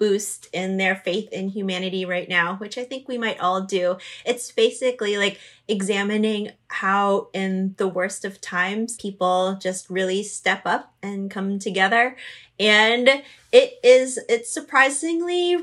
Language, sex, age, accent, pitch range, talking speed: English, female, 20-39, American, 185-225 Hz, 145 wpm